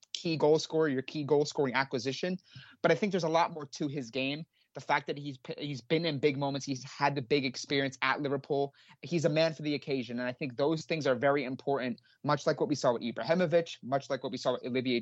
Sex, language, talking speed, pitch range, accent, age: male, English, 250 wpm, 130-150 Hz, American, 30-49